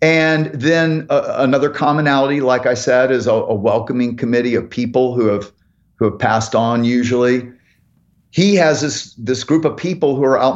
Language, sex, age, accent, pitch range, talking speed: English, male, 40-59, American, 120-160 Hz, 180 wpm